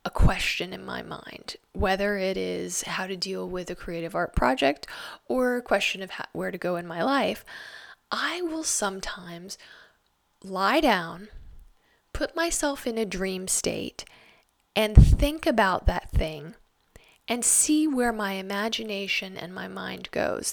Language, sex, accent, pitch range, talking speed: English, female, American, 190-240 Hz, 145 wpm